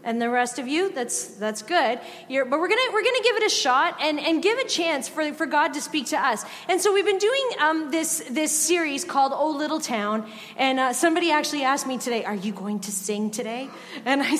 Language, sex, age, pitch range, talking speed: English, female, 30-49, 245-320 Hz, 245 wpm